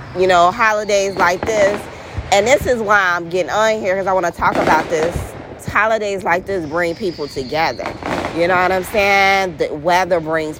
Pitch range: 155-200 Hz